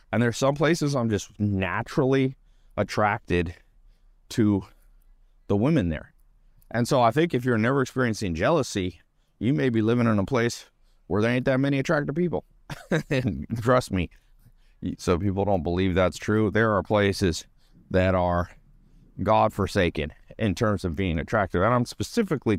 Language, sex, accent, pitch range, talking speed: English, male, American, 90-115 Hz, 155 wpm